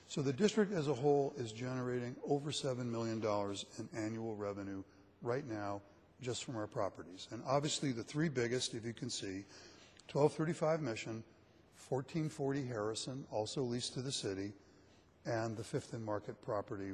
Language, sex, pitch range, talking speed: English, male, 105-145 Hz, 155 wpm